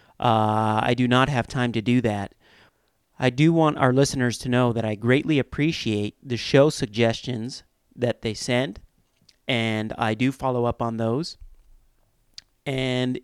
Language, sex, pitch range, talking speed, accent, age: English, male, 115-140 Hz, 155 wpm, American, 40-59